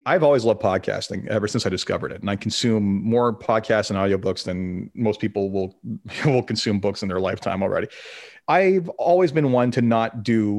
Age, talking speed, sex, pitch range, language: 30-49, 195 wpm, male, 100-120 Hz, English